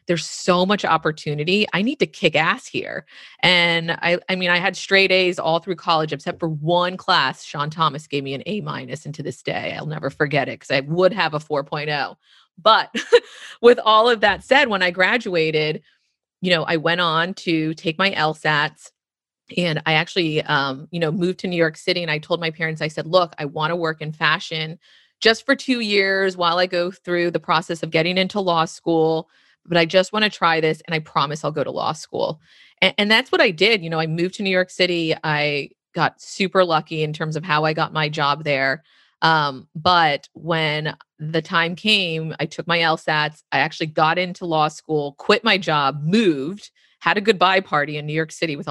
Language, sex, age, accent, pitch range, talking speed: English, female, 30-49, American, 155-180 Hz, 215 wpm